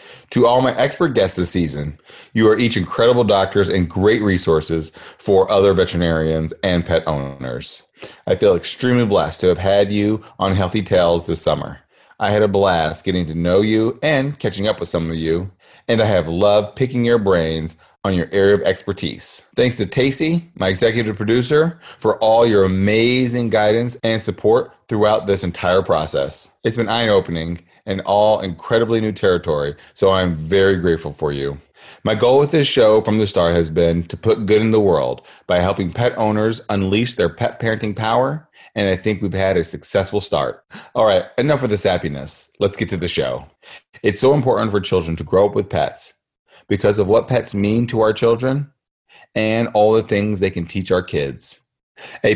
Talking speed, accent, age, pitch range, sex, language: 190 wpm, American, 30-49, 90-115 Hz, male, English